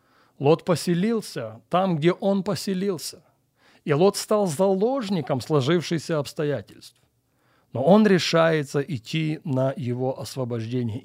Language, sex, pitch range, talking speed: Russian, male, 130-185 Hz, 105 wpm